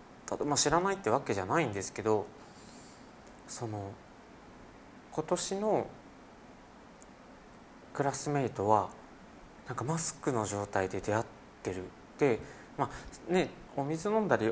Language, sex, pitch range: Japanese, male, 100-140 Hz